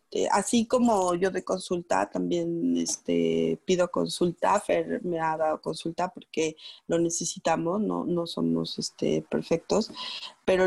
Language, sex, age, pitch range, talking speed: Spanish, female, 30-49, 180-240 Hz, 130 wpm